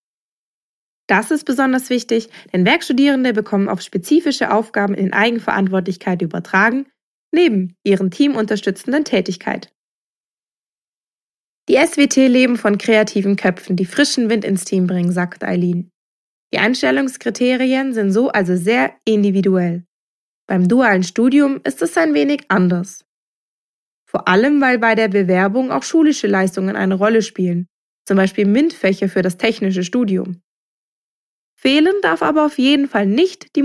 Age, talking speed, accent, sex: 20-39, 130 wpm, German, female